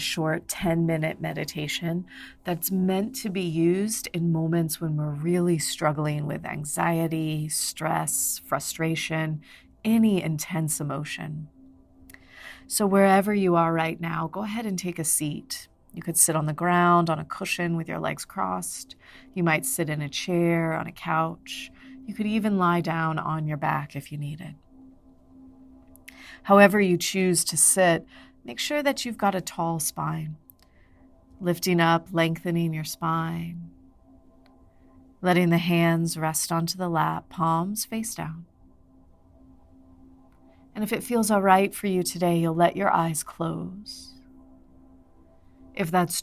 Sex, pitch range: female, 150-180 Hz